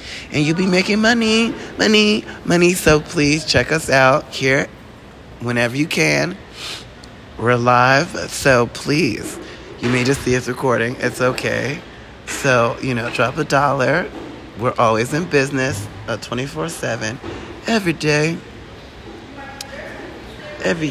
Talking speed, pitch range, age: 125 wpm, 125-180 Hz, 20-39